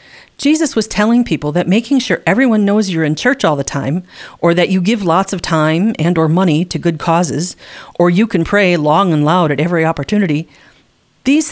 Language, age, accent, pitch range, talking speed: English, 40-59, American, 160-225 Hz, 205 wpm